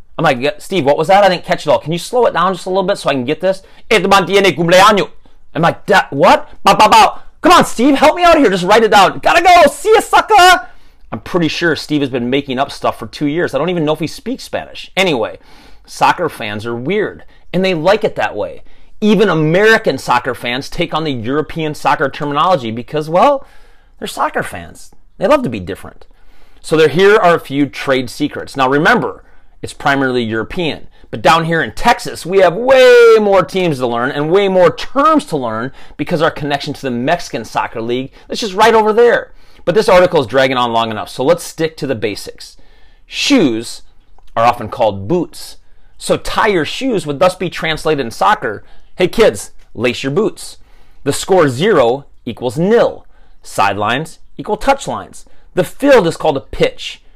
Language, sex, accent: English, male, American